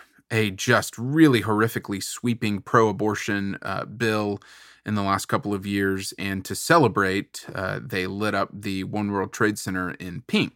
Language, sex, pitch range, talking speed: English, male, 100-120 Hz, 160 wpm